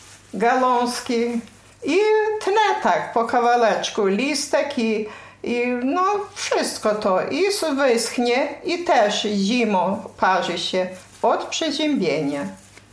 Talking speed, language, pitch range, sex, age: 95 wpm, Polish, 180-250 Hz, female, 50-69